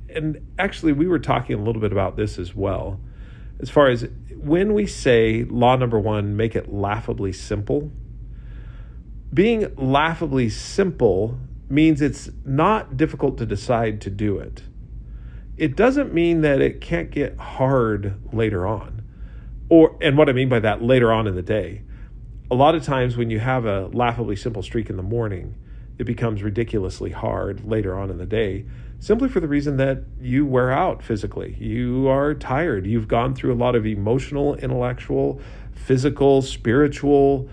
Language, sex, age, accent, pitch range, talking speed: English, male, 40-59, American, 105-140 Hz, 165 wpm